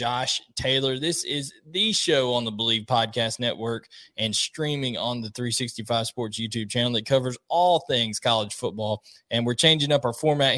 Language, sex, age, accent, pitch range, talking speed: English, male, 20-39, American, 120-145 Hz, 175 wpm